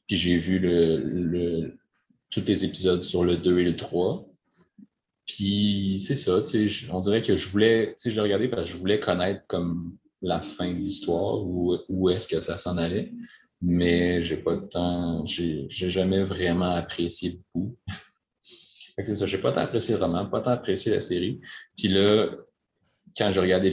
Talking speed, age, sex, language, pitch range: 195 wpm, 30-49, male, French, 85-100 Hz